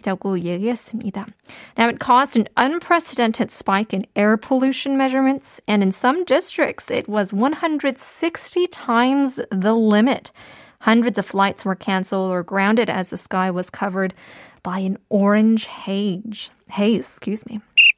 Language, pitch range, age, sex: Korean, 200-275 Hz, 20-39, female